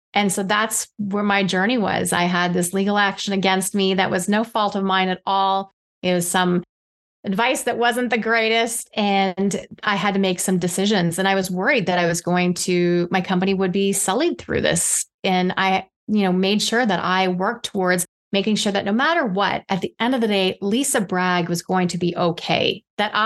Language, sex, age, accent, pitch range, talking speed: English, female, 30-49, American, 180-205 Hz, 215 wpm